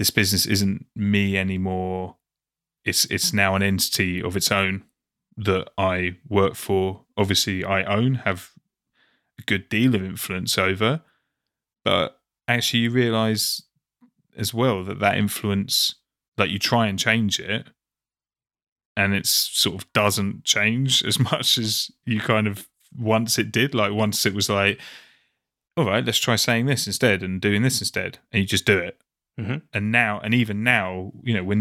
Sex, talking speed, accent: male, 165 wpm, British